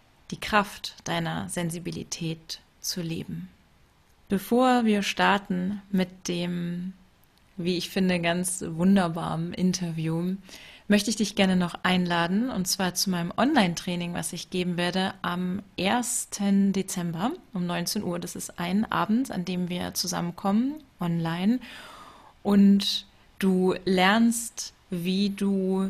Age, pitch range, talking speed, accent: 30-49, 175-200 Hz, 120 wpm, German